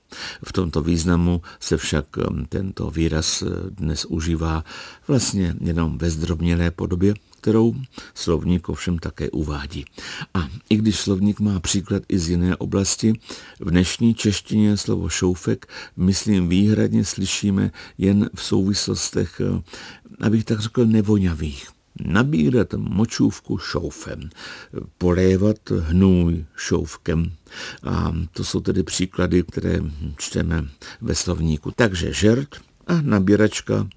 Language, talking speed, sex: Czech, 110 wpm, male